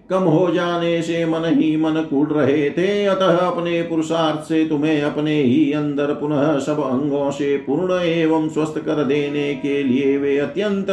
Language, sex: Hindi, male